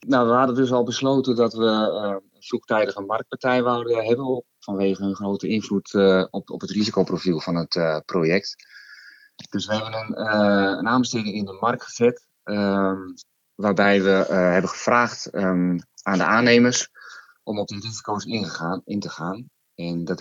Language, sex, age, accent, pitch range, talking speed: Dutch, male, 30-49, Dutch, 95-115 Hz, 175 wpm